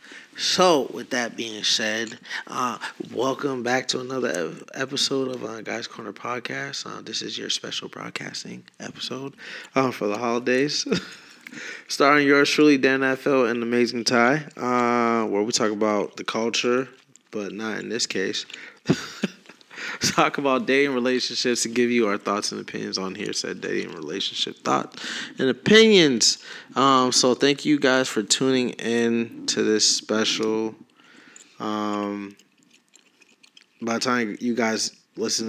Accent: American